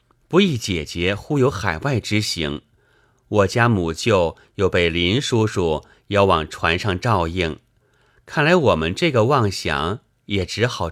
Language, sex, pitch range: Chinese, male, 85-120 Hz